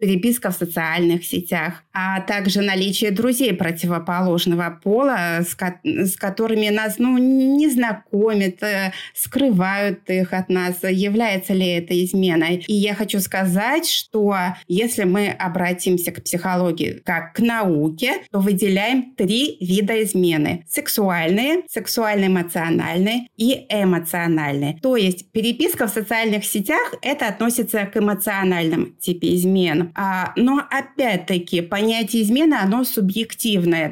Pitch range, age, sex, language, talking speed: 180-230 Hz, 30-49, female, Russian, 115 wpm